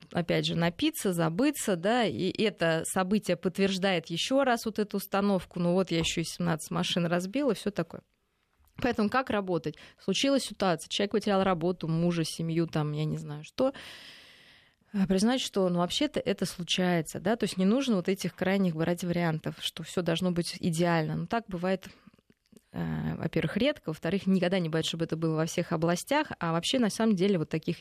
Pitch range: 165-210 Hz